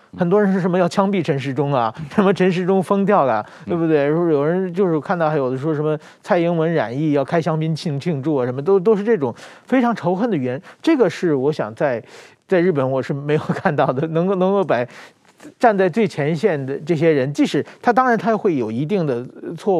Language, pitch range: Chinese, 140-190 Hz